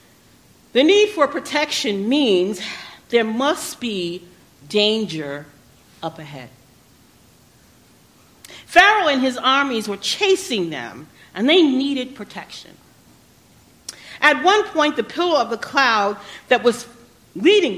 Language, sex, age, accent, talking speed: English, female, 50-69, American, 110 wpm